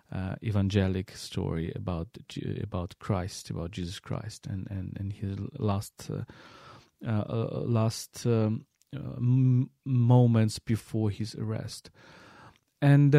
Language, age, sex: English, 40-59, male